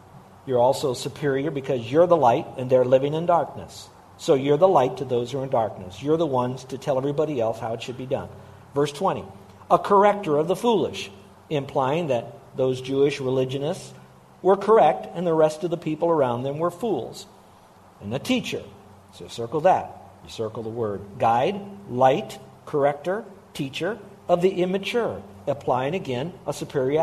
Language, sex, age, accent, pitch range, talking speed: English, male, 50-69, American, 125-165 Hz, 175 wpm